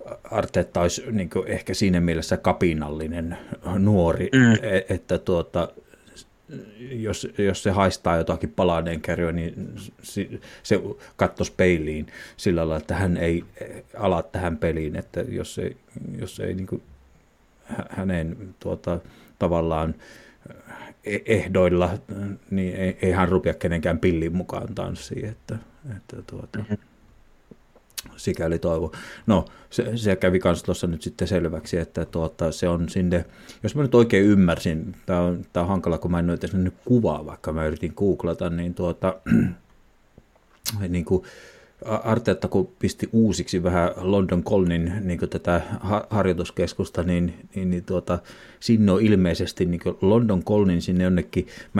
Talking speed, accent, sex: 120 wpm, native, male